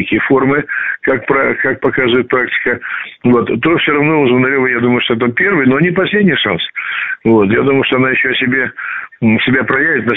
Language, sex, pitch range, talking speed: Russian, male, 105-125 Hz, 175 wpm